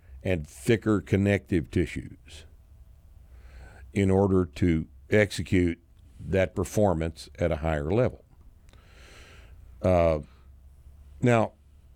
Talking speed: 80 wpm